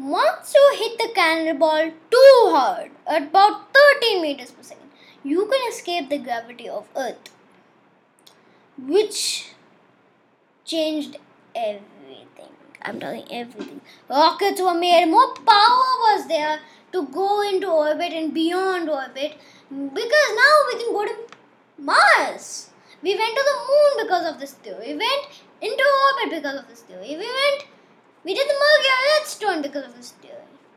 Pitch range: 285-380 Hz